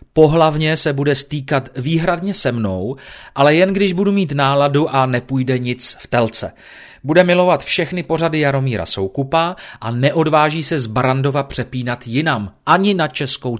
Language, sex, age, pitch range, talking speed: Czech, male, 40-59, 115-150 Hz, 150 wpm